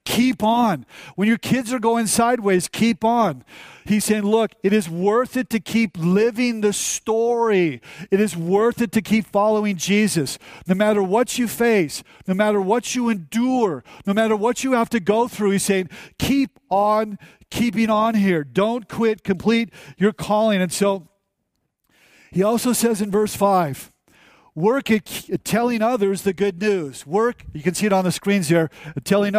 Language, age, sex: English, 50-69, male